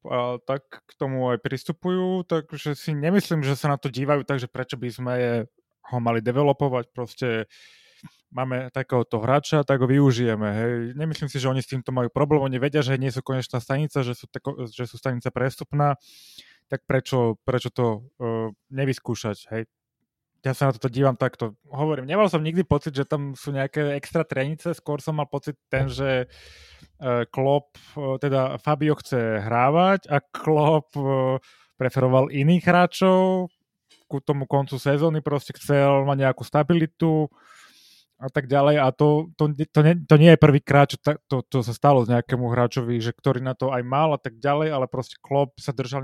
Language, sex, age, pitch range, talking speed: Slovak, male, 20-39, 125-150 Hz, 175 wpm